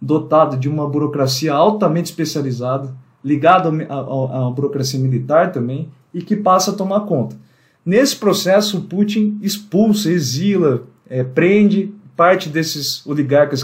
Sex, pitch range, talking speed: male, 135-190 Hz, 120 wpm